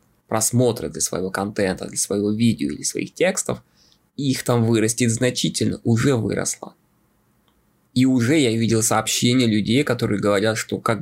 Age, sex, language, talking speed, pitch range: 20-39, male, Russian, 140 wpm, 110-130 Hz